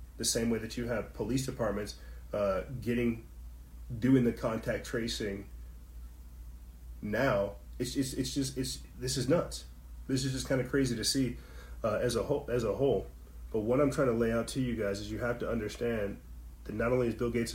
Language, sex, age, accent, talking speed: English, male, 30-49, American, 200 wpm